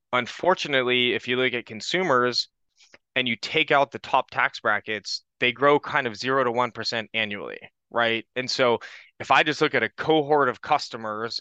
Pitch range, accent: 110-130 Hz, American